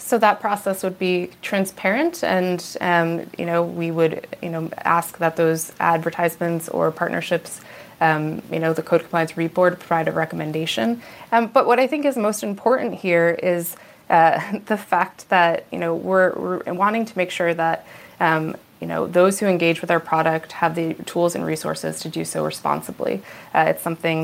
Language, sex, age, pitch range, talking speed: English, female, 20-39, 165-180 Hz, 180 wpm